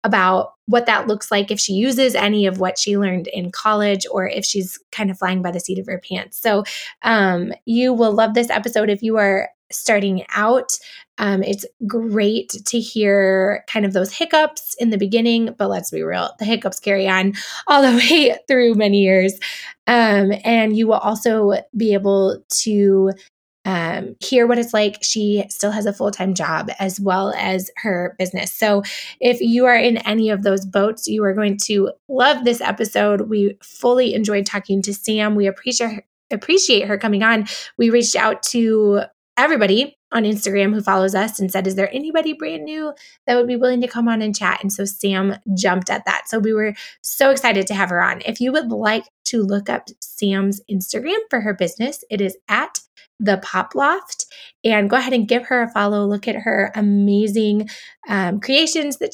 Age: 20-39